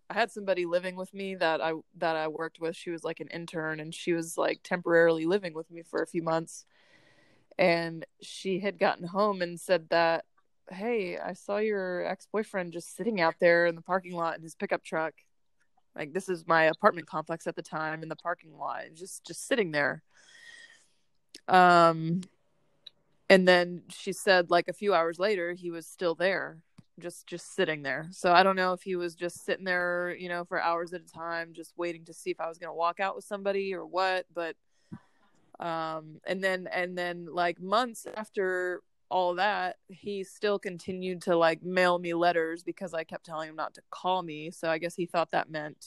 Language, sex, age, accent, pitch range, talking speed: English, female, 20-39, American, 165-185 Hz, 205 wpm